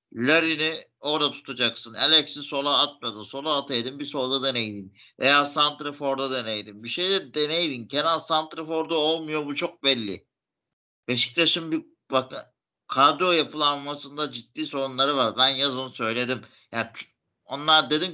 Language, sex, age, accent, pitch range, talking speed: Turkish, male, 50-69, native, 125-155 Hz, 130 wpm